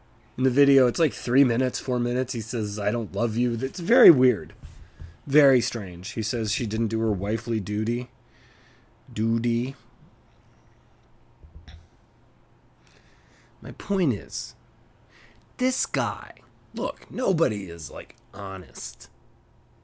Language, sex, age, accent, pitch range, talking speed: English, male, 30-49, American, 105-125 Hz, 120 wpm